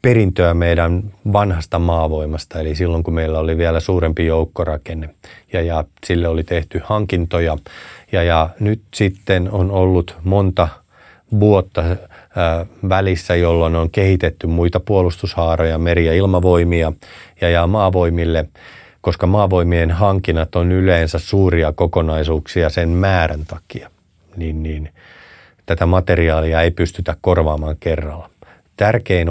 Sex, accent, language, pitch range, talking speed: male, native, Finnish, 80-90 Hz, 120 wpm